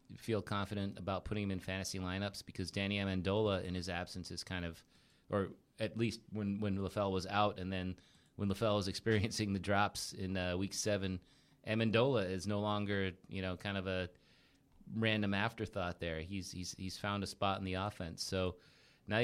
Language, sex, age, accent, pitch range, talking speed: English, male, 30-49, American, 90-110 Hz, 185 wpm